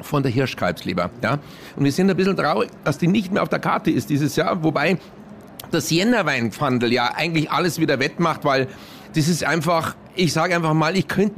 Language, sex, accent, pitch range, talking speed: German, male, German, 155-210 Hz, 200 wpm